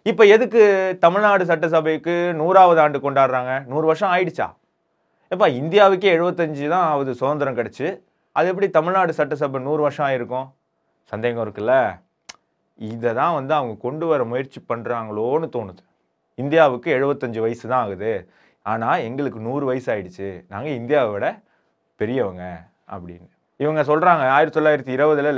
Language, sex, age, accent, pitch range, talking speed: Tamil, male, 30-49, native, 125-170 Hz, 125 wpm